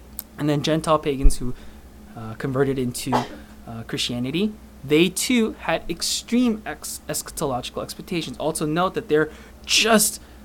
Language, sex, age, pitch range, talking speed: English, male, 20-39, 140-220 Hz, 120 wpm